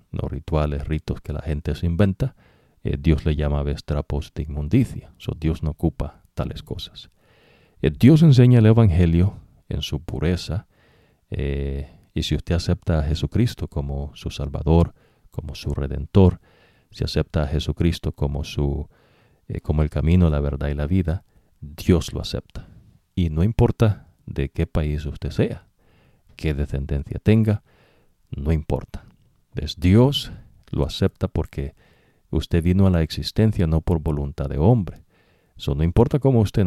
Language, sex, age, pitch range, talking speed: English, male, 50-69, 75-100 Hz, 150 wpm